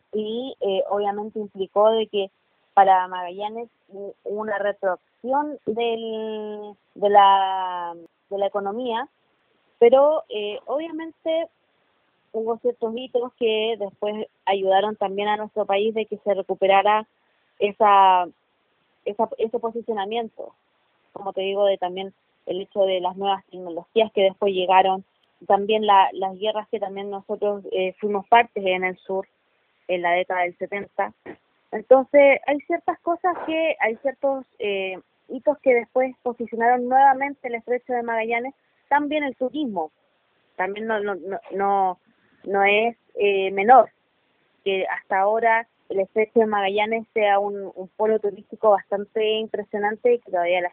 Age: 20-39